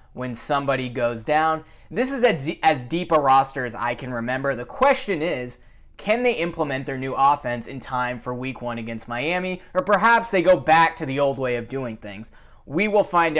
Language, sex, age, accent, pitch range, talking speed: English, male, 20-39, American, 125-170 Hz, 200 wpm